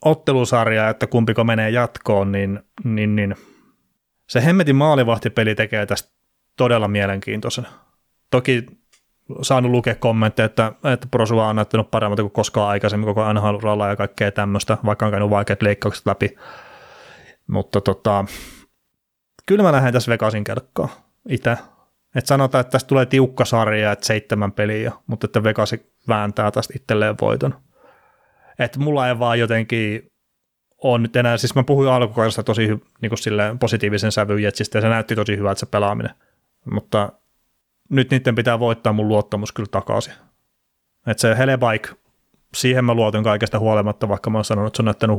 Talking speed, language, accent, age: 155 wpm, Finnish, native, 30-49